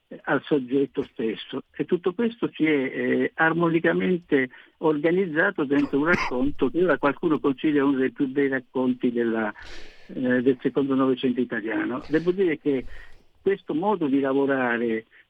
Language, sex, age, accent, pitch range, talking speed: Italian, male, 60-79, native, 125-160 Hz, 145 wpm